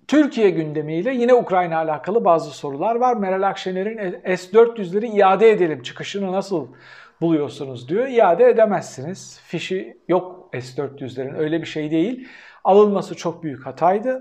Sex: male